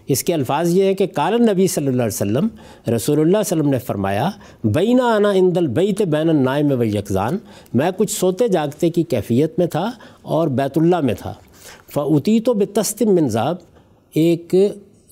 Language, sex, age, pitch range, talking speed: Urdu, male, 50-69, 130-185 Hz, 185 wpm